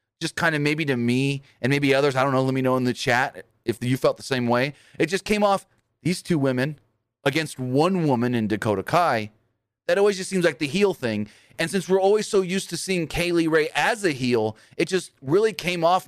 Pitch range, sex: 115-165 Hz, male